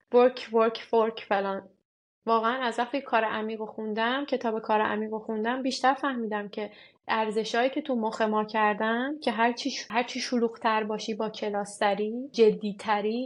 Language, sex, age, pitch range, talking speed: Persian, female, 30-49, 210-245 Hz, 135 wpm